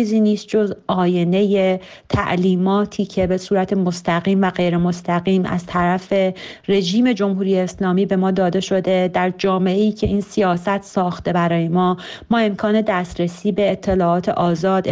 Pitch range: 180-210 Hz